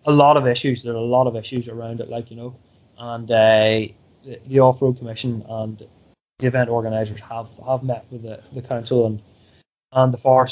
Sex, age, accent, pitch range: male, 20-39, Irish, 120-135 Hz